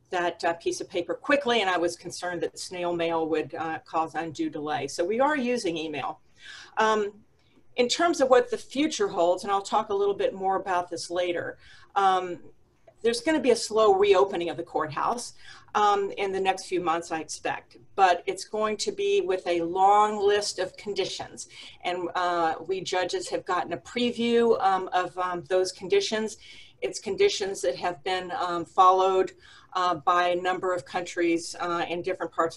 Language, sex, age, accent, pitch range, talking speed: English, female, 40-59, American, 175-240 Hz, 185 wpm